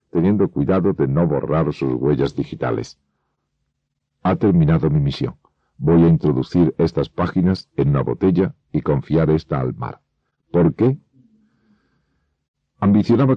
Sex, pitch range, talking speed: male, 75-95 Hz, 125 wpm